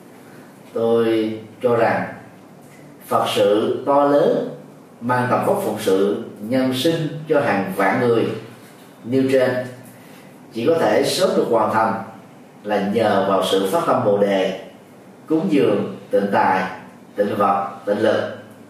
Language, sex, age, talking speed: Vietnamese, male, 30-49, 135 wpm